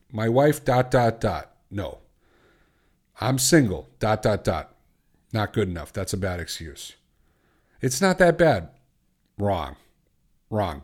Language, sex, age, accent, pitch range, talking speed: English, male, 50-69, American, 100-150 Hz, 135 wpm